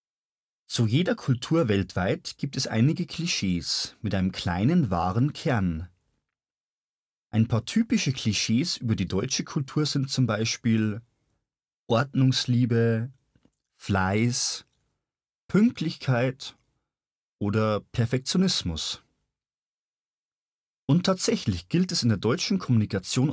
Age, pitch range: 40-59, 105-145 Hz